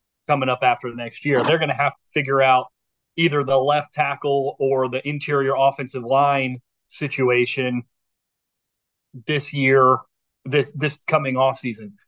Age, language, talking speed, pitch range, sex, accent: 30-49, English, 150 wpm, 125-145 Hz, male, American